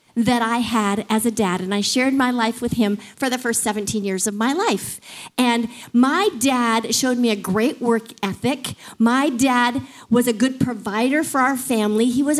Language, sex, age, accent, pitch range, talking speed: English, female, 50-69, American, 220-275 Hz, 200 wpm